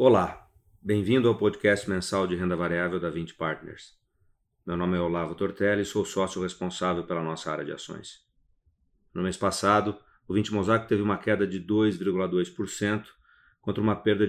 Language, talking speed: Portuguese, 165 wpm